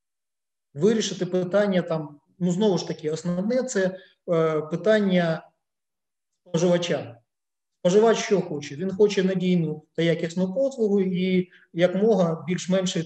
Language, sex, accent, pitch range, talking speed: Ukrainian, male, native, 155-195 Hz, 110 wpm